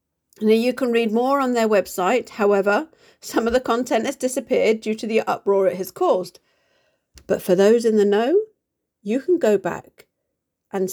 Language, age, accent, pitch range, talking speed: English, 50-69, British, 200-255 Hz, 180 wpm